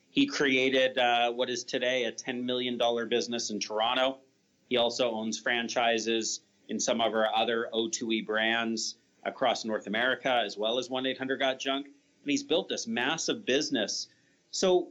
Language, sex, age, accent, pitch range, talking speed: English, male, 30-49, American, 115-140 Hz, 150 wpm